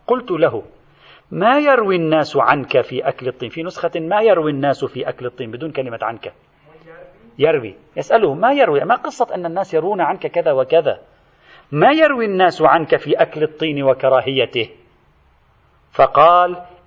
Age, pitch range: 40-59, 140-190 Hz